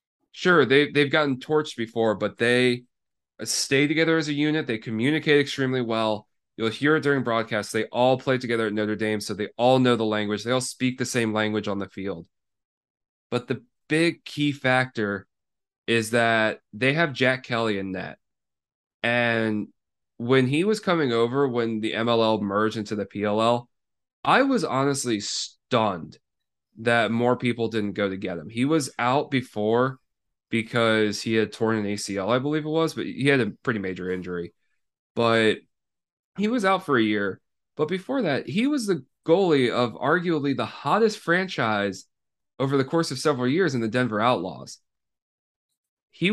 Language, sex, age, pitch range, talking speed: English, male, 20-39, 110-145 Hz, 170 wpm